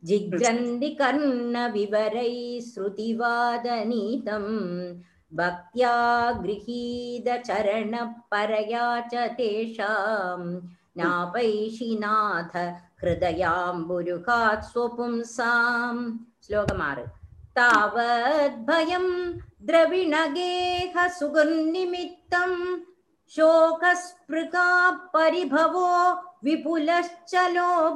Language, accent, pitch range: Tamil, native, 235-350 Hz